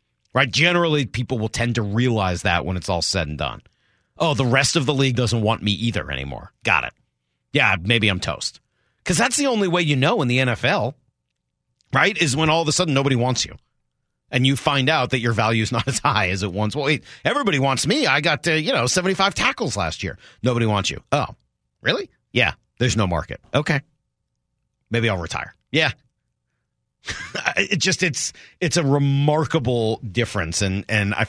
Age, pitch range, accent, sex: 40-59, 100-145 Hz, American, male